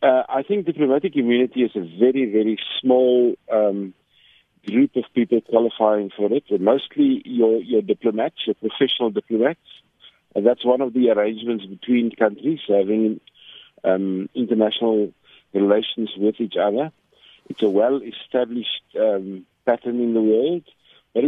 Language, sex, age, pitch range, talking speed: English, male, 50-69, 110-130 Hz, 150 wpm